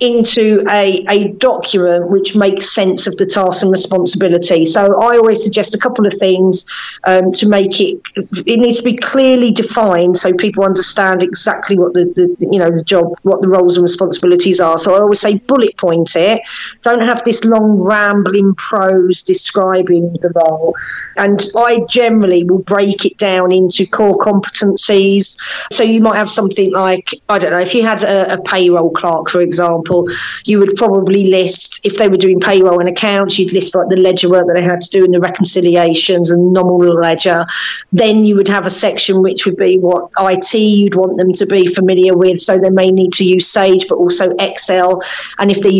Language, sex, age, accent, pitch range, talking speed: English, female, 40-59, British, 180-205 Hz, 195 wpm